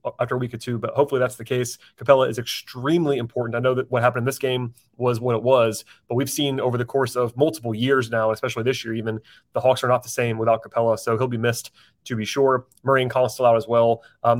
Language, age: English, 30-49